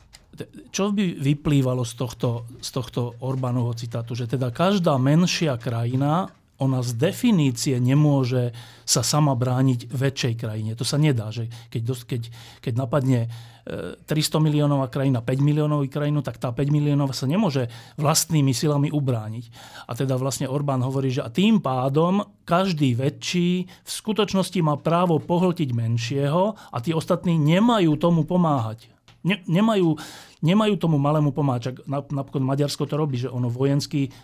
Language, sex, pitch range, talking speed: Slovak, male, 125-160 Hz, 145 wpm